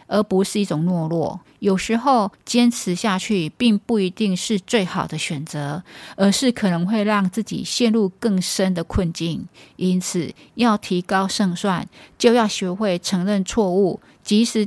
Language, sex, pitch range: Chinese, female, 180-220 Hz